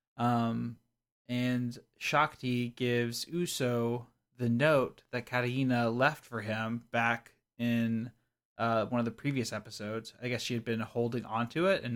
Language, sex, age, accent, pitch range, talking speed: English, male, 20-39, American, 120-130 Hz, 145 wpm